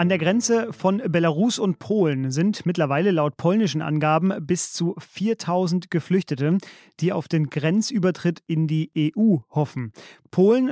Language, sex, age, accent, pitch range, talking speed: German, male, 30-49, German, 160-195 Hz, 140 wpm